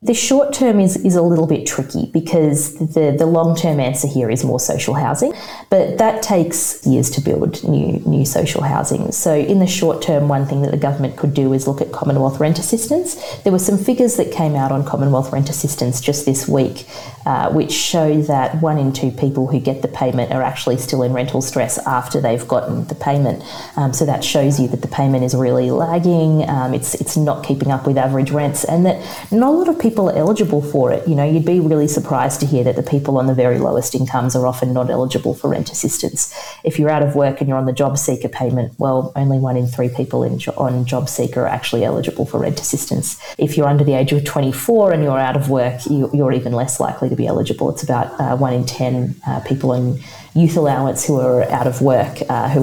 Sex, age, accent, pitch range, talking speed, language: female, 30-49, Australian, 130-155 Hz, 230 wpm, English